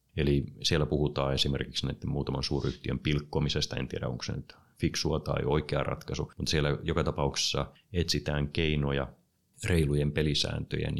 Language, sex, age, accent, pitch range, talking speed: Finnish, male, 30-49, native, 70-85 Hz, 130 wpm